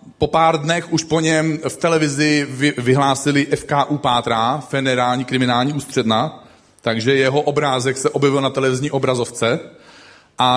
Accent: native